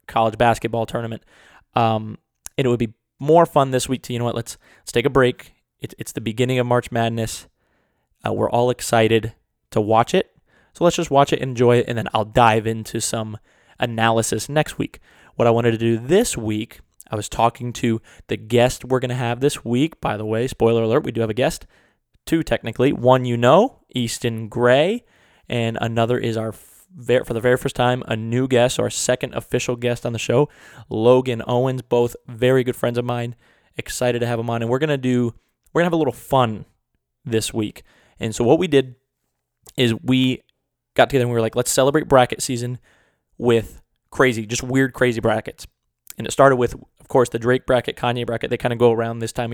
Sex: male